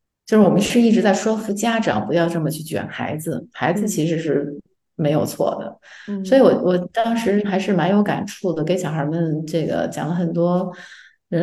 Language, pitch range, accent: Chinese, 165-220 Hz, native